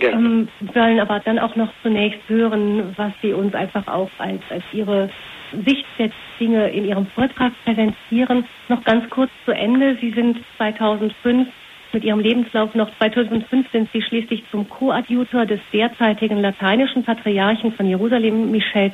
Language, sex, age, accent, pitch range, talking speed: German, female, 40-59, German, 205-240 Hz, 150 wpm